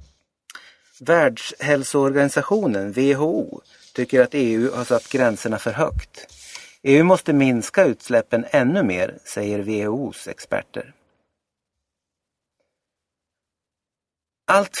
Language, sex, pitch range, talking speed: Swedish, male, 115-150 Hz, 80 wpm